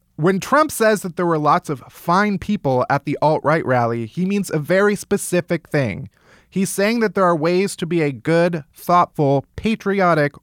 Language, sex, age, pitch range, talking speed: English, male, 30-49, 135-185 Hz, 185 wpm